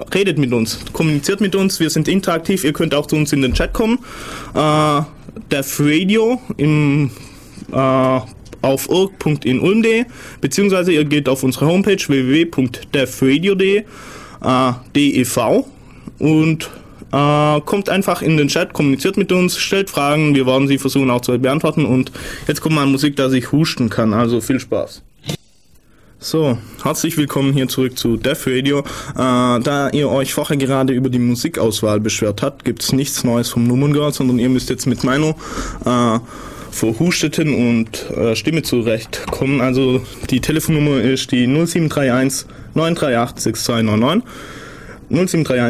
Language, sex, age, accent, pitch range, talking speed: German, male, 20-39, German, 125-155 Hz, 140 wpm